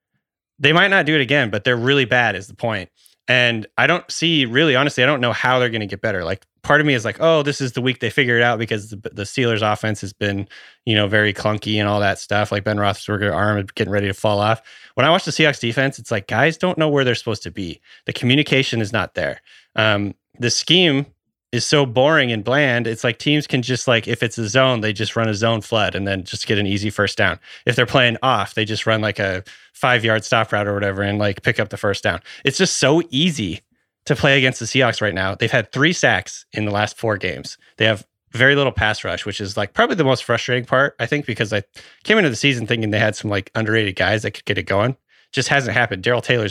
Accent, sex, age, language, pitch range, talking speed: American, male, 30-49, English, 105-130 Hz, 260 wpm